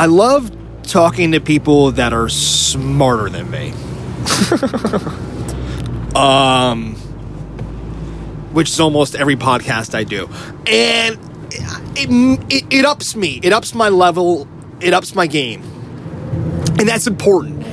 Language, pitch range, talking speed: English, 125-180 Hz, 120 wpm